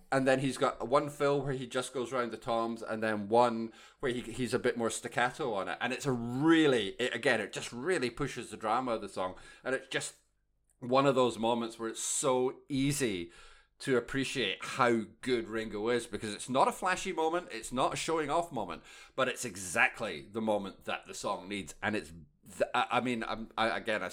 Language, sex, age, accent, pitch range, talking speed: English, male, 30-49, British, 105-135 Hz, 215 wpm